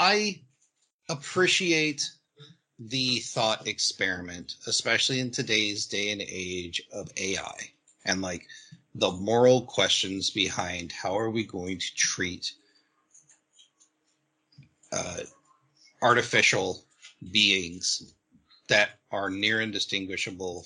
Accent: American